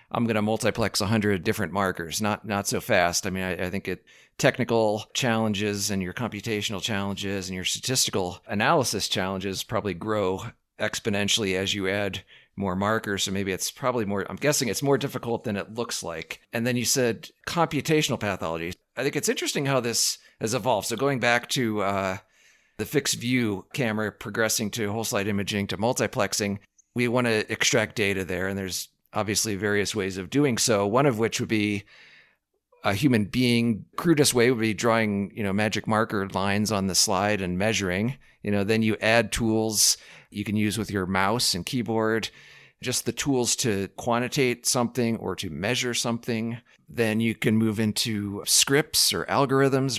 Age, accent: 40-59, American